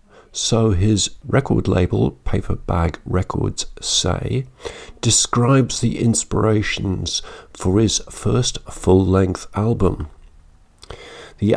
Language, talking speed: English, 90 wpm